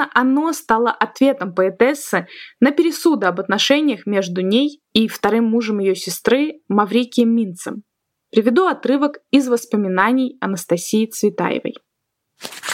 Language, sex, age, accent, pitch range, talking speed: Russian, female, 20-39, native, 200-260 Hz, 110 wpm